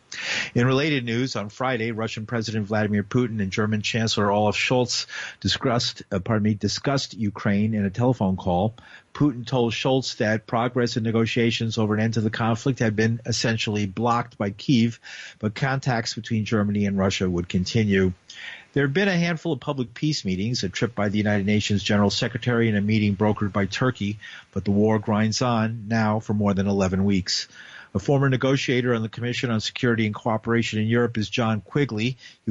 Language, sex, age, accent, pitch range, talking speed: English, male, 50-69, American, 105-120 Hz, 185 wpm